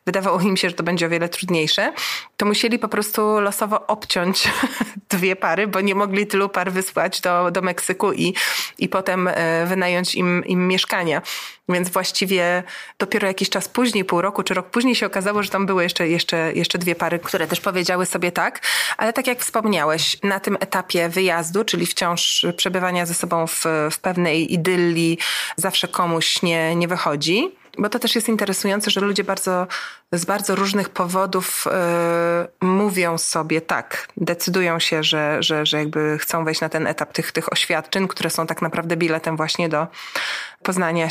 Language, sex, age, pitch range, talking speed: Polish, female, 30-49, 170-200 Hz, 175 wpm